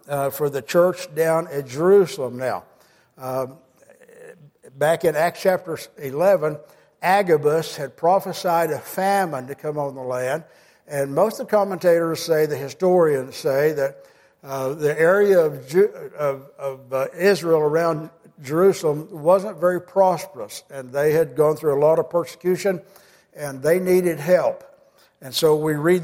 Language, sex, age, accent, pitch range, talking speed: English, male, 60-79, American, 150-185 Hz, 145 wpm